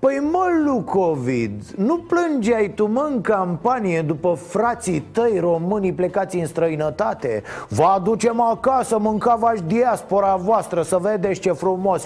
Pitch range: 155-200 Hz